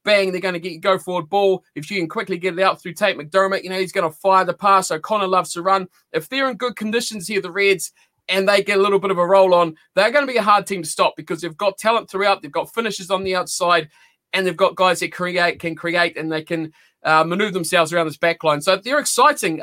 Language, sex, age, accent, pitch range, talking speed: English, male, 20-39, Australian, 175-205 Hz, 270 wpm